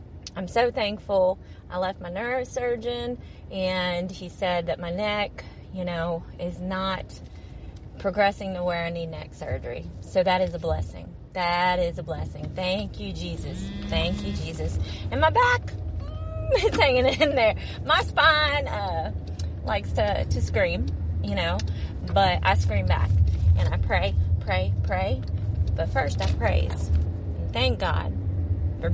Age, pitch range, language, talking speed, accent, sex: 30-49, 85-100 Hz, English, 150 wpm, American, female